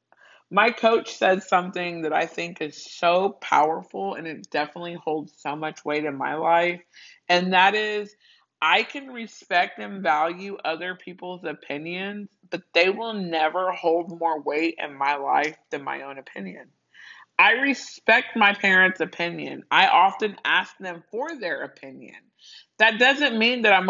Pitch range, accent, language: 165-220 Hz, American, English